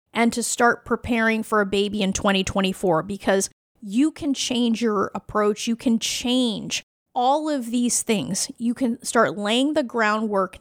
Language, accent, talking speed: English, American, 160 wpm